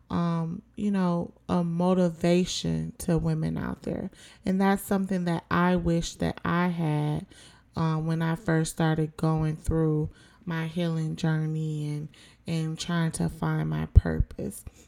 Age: 20-39